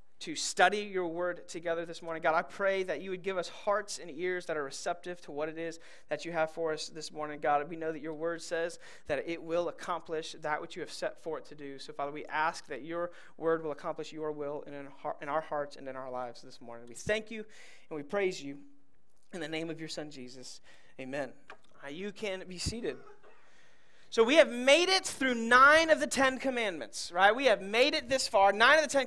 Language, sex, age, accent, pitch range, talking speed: English, male, 30-49, American, 165-250 Hz, 235 wpm